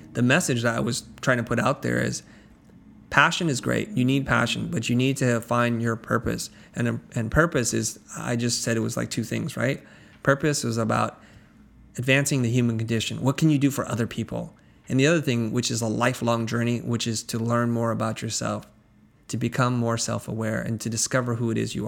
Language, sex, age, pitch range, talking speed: English, male, 30-49, 115-130 Hz, 215 wpm